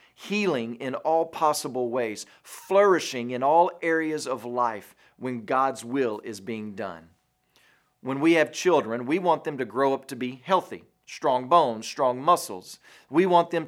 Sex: male